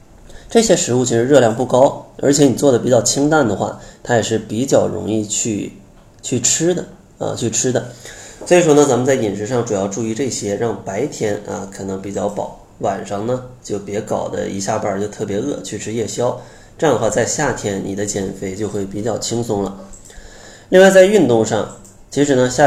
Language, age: Chinese, 20-39